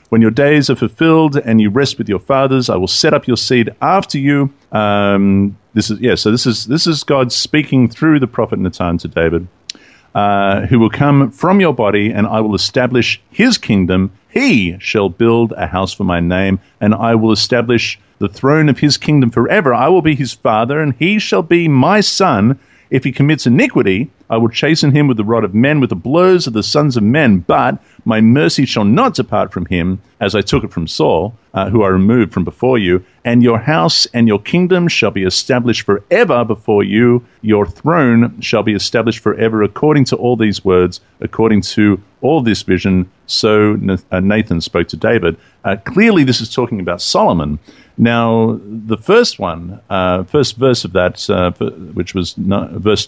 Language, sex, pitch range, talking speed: English, male, 100-135 Hz, 195 wpm